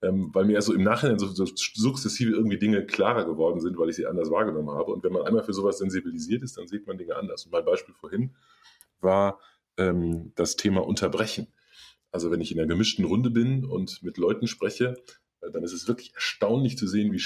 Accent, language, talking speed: German, German, 215 wpm